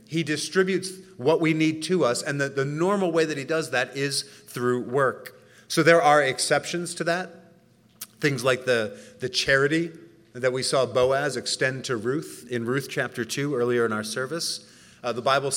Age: 30-49